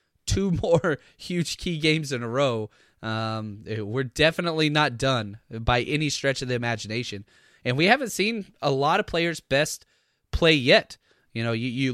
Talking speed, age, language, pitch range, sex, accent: 170 wpm, 20-39, English, 115-150 Hz, male, American